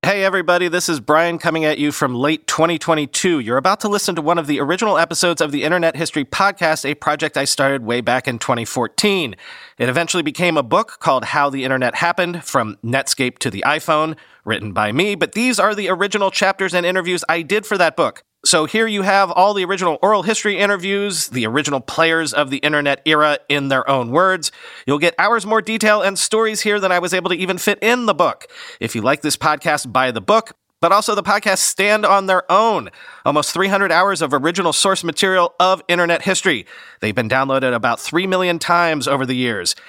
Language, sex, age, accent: English, male, 40-59, American